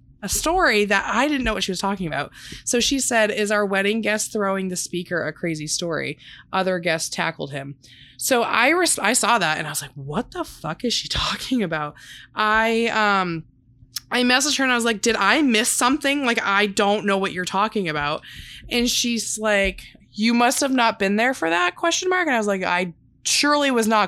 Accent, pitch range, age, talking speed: American, 175-225 Hz, 20-39, 215 wpm